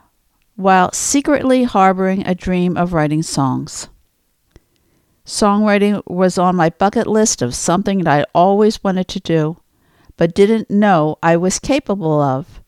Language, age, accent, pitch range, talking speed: English, 60-79, American, 170-215 Hz, 135 wpm